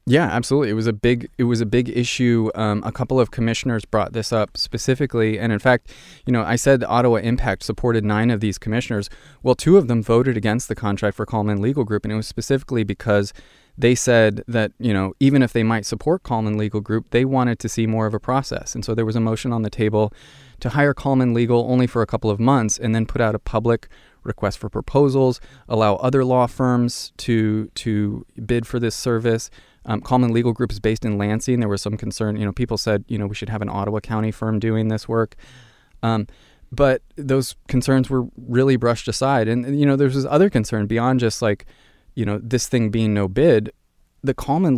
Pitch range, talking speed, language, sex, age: 110-125 Hz, 220 wpm, English, male, 20-39